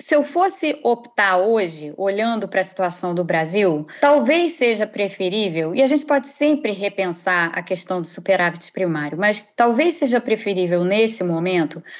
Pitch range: 185-235 Hz